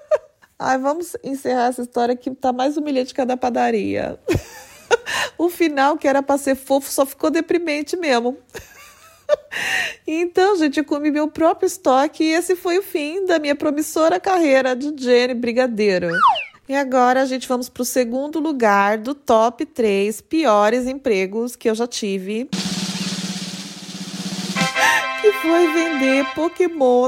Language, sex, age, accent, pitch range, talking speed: Portuguese, female, 20-39, Brazilian, 230-300 Hz, 140 wpm